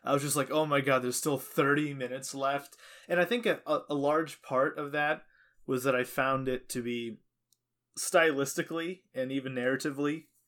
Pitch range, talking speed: 125-150 Hz, 185 wpm